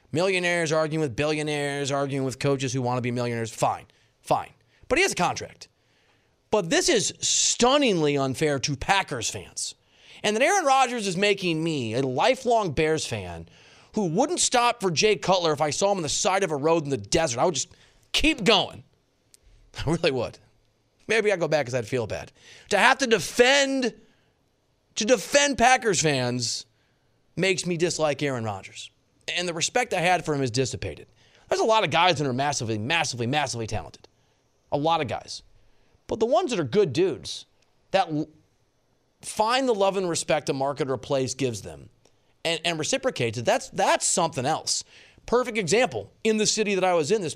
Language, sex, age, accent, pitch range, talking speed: English, male, 30-49, American, 125-195 Hz, 185 wpm